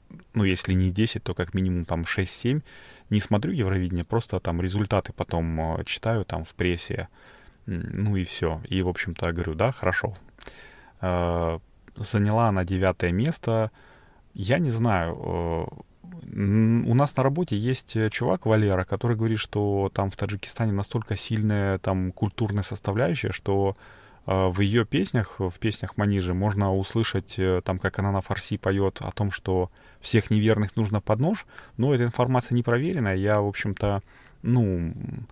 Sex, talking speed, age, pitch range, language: male, 145 wpm, 30-49, 95-115 Hz, Russian